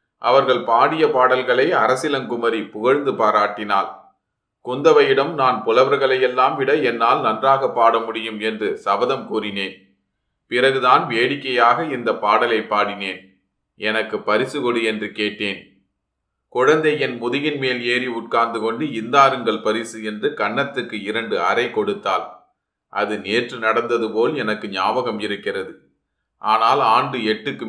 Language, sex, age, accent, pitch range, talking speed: Tamil, male, 30-49, native, 110-145 Hz, 110 wpm